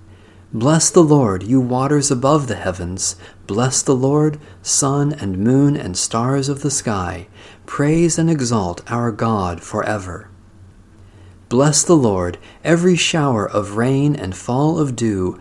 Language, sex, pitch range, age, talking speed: English, male, 100-135 Hz, 40-59, 140 wpm